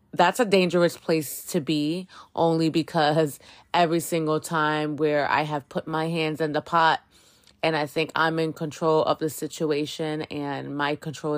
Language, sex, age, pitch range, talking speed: English, female, 20-39, 150-170 Hz, 170 wpm